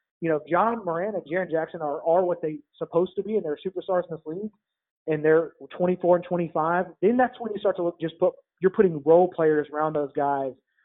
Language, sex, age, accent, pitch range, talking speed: English, male, 30-49, American, 155-190 Hz, 240 wpm